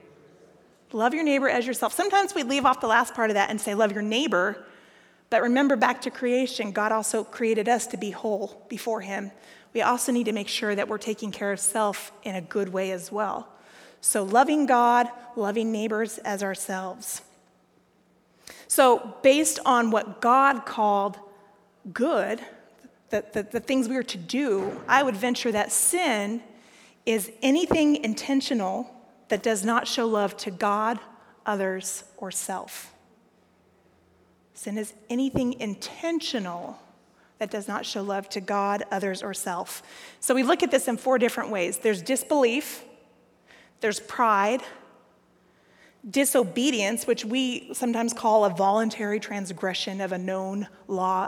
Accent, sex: American, female